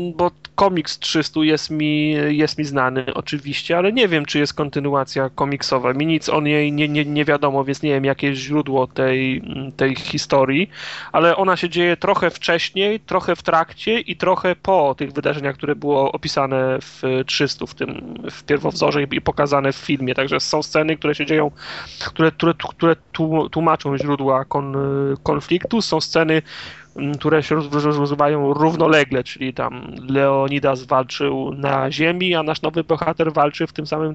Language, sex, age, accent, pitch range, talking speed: Polish, male, 30-49, native, 140-160 Hz, 170 wpm